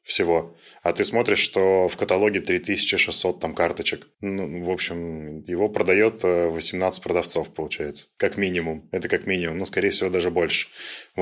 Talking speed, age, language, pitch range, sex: 160 wpm, 20-39, Russian, 85-100 Hz, male